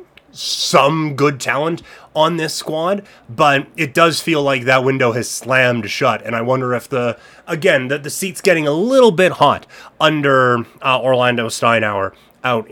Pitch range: 130-170 Hz